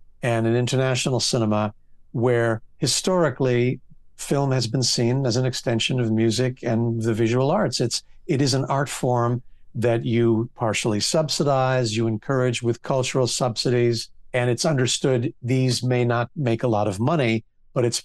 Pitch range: 120-145 Hz